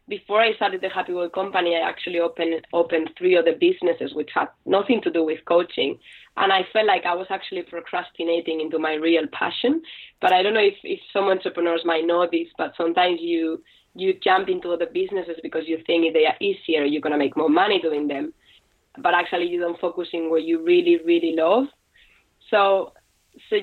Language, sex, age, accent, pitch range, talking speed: English, female, 20-39, Spanish, 165-215 Hz, 205 wpm